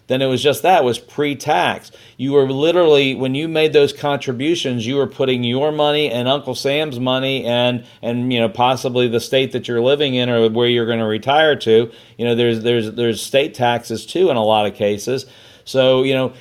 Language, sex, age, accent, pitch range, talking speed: English, male, 40-59, American, 115-135 Hz, 210 wpm